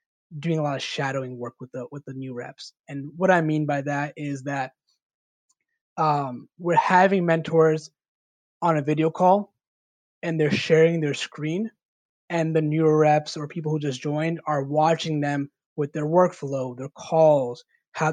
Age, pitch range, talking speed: 20-39, 145-165 Hz, 170 wpm